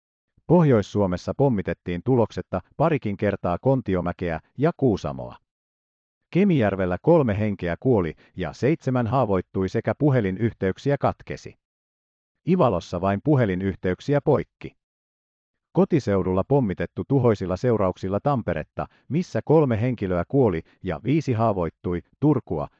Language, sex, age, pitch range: Finnish, male, 50-69, 90-130 Hz